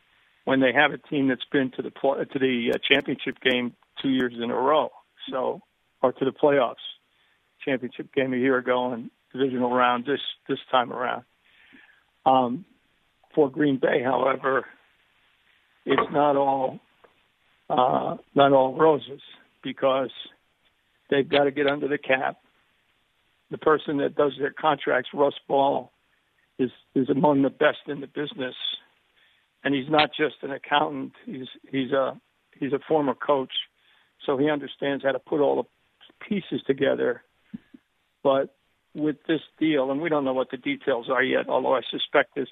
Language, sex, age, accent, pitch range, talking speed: English, male, 60-79, American, 130-145 Hz, 155 wpm